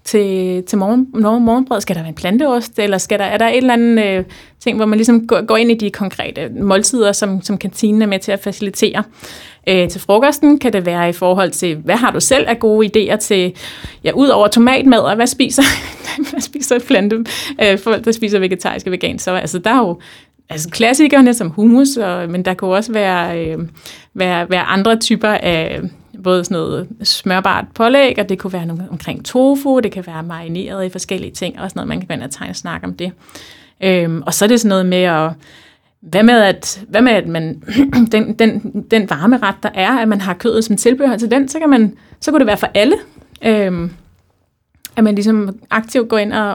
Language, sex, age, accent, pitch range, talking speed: Danish, female, 30-49, native, 185-235 Hz, 215 wpm